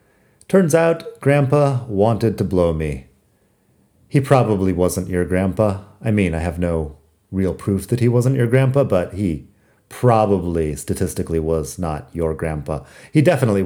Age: 40-59